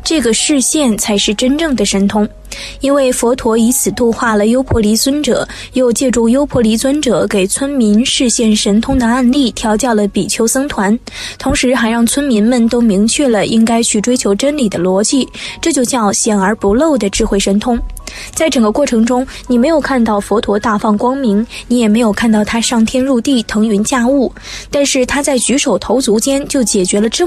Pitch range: 215-270 Hz